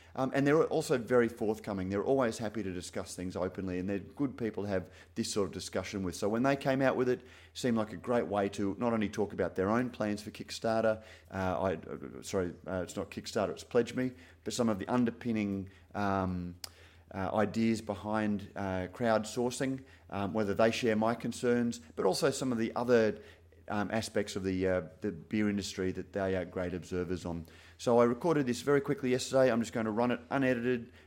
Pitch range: 90-120 Hz